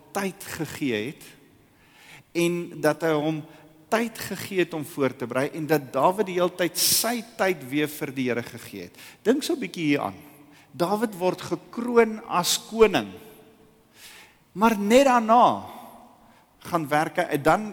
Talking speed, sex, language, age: 145 wpm, male, English, 50-69